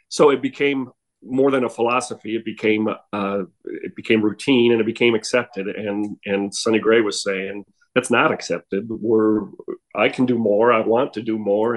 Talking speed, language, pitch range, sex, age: 185 wpm, English, 100-115 Hz, male, 40-59